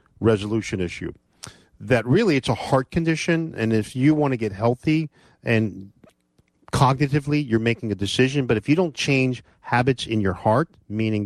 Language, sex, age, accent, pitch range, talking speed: English, male, 40-59, American, 100-135 Hz, 165 wpm